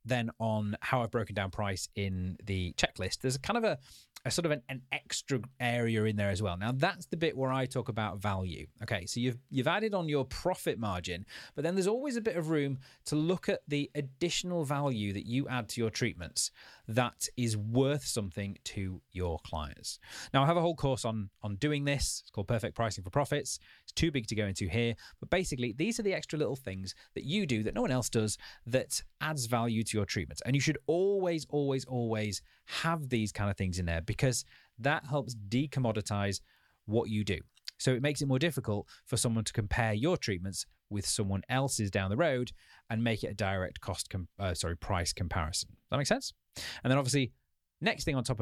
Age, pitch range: 30-49, 100-135 Hz